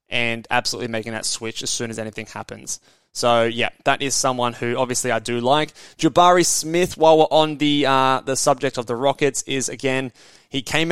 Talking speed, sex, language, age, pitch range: 200 wpm, male, English, 20-39, 120-150 Hz